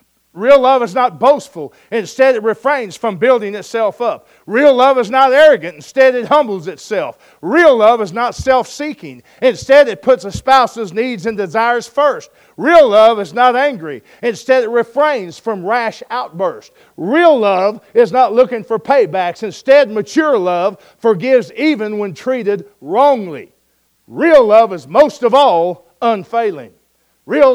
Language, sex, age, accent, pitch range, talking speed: English, male, 50-69, American, 180-255 Hz, 150 wpm